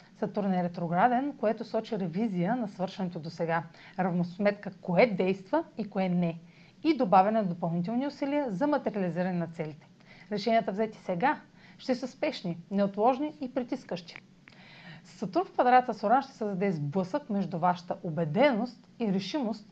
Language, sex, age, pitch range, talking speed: Bulgarian, female, 40-59, 180-230 Hz, 140 wpm